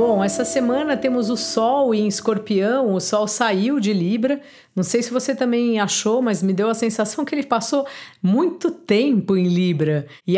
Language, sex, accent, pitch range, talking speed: Portuguese, female, Brazilian, 190-245 Hz, 185 wpm